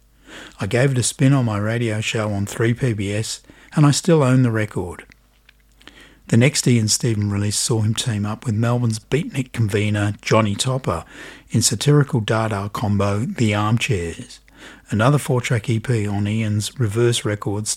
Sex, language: male, English